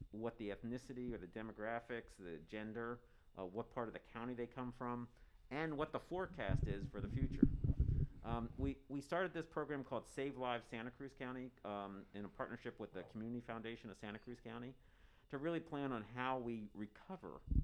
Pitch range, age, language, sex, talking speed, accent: 100-125 Hz, 50-69, English, male, 190 wpm, American